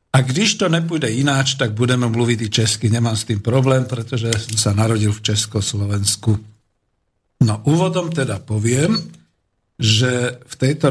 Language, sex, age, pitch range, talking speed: Slovak, male, 50-69, 110-135 Hz, 155 wpm